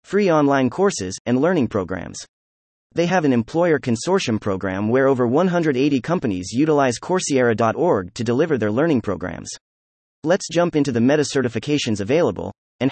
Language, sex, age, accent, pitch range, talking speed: English, male, 30-49, American, 110-155 Hz, 140 wpm